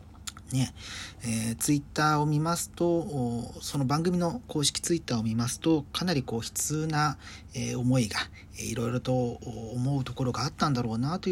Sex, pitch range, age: male, 105-155 Hz, 40-59